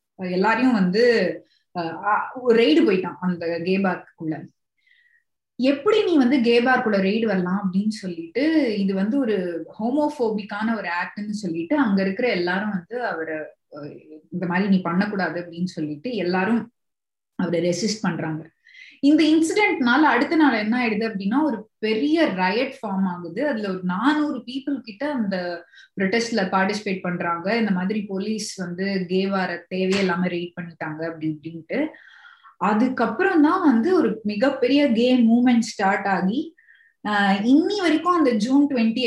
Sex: female